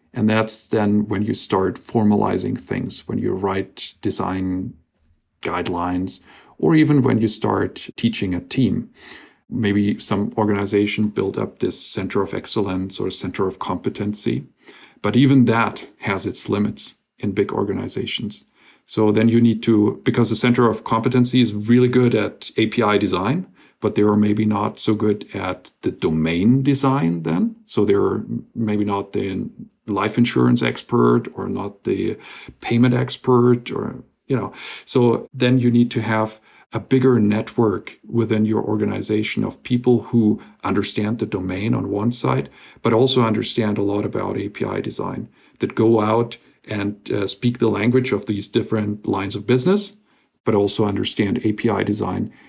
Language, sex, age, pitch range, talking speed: English, male, 40-59, 105-120 Hz, 155 wpm